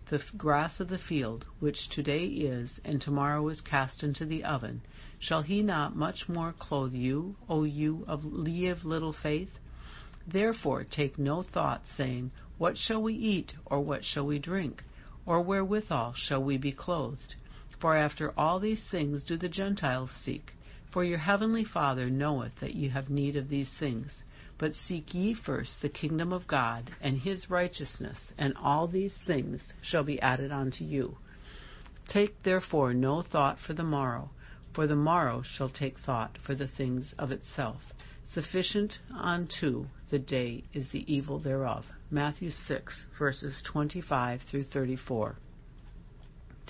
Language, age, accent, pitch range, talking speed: English, 60-79, American, 135-170 Hz, 155 wpm